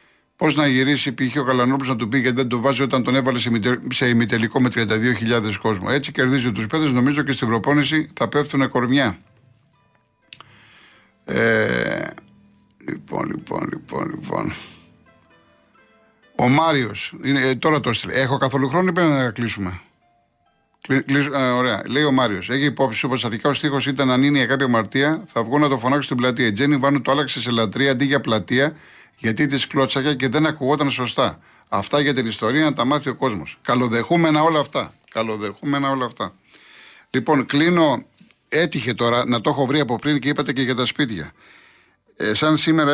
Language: Greek